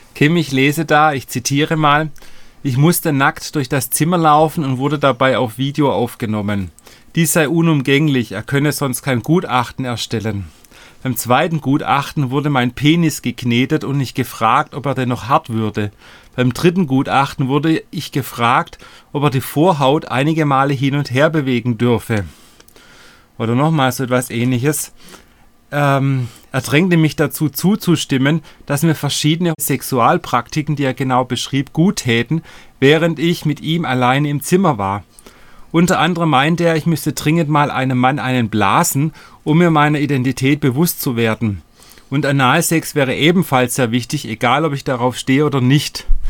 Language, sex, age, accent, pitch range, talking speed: German, male, 40-59, German, 125-155 Hz, 160 wpm